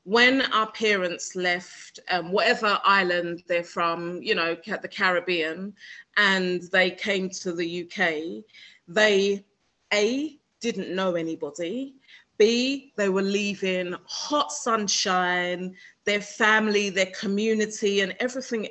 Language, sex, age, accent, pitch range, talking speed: English, female, 30-49, British, 180-215 Hz, 115 wpm